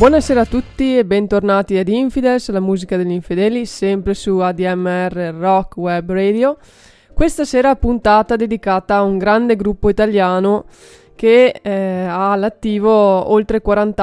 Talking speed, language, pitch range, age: 135 wpm, Italian, 190-220 Hz, 20-39